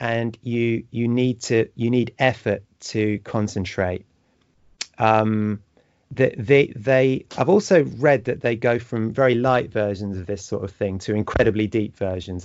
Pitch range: 105-125 Hz